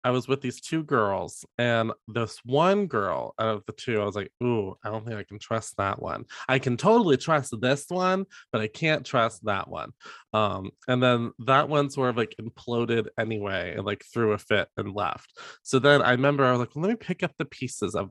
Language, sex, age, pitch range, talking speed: English, male, 20-39, 115-140 Hz, 230 wpm